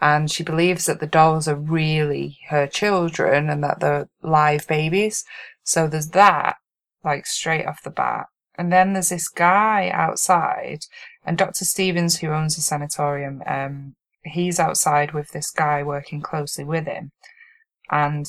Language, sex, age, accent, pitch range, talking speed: English, female, 20-39, British, 165-240 Hz, 155 wpm